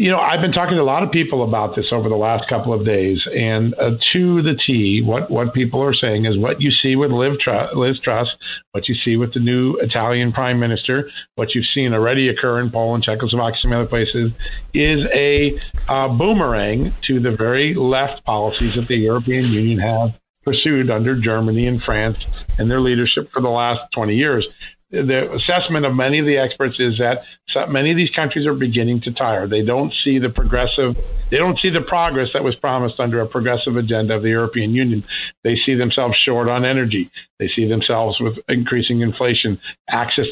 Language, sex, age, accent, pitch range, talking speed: English, male, 50-69, American, 115-135 Hz, 200 wpm